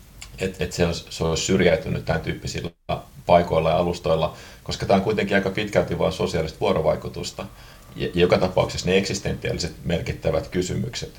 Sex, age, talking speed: male, 30-49, 135 wpm